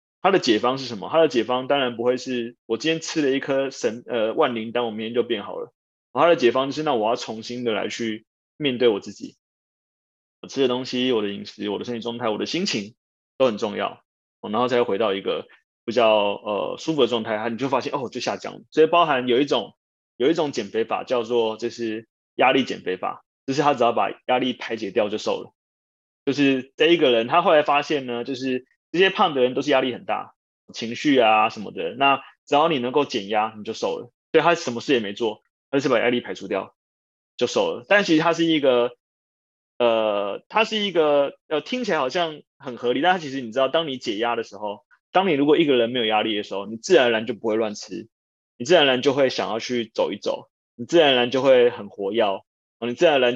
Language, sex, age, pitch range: Chinese, male, 20-39, 115-145 Hz